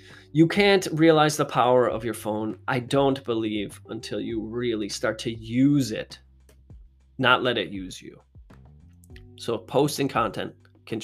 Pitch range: 105-150 Hz